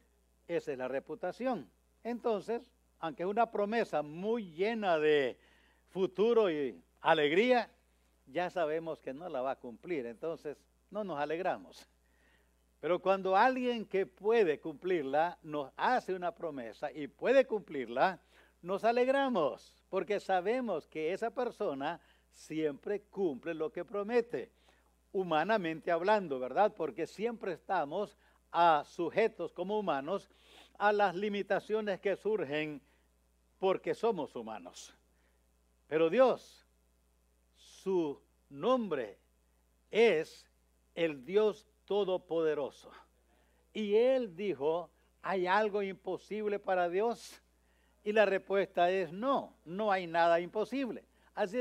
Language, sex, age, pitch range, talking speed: English, male, 60-79, 150-215 Hz, 110 wpm